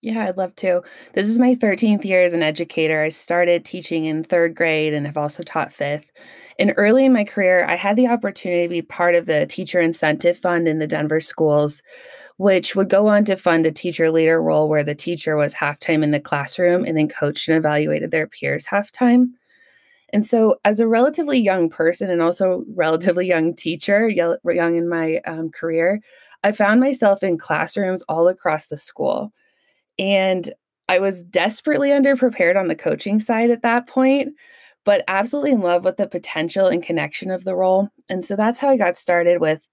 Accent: American